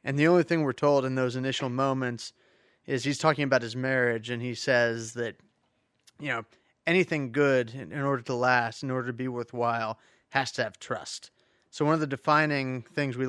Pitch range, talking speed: 120-140 Hz, 200 wpm